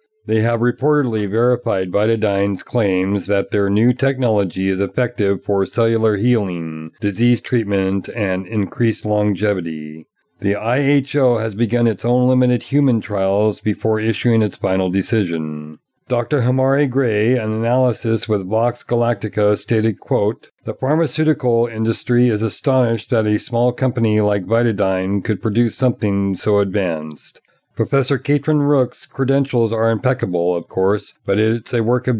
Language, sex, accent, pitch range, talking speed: English, male, American, 105-125 Hz, 135 wpm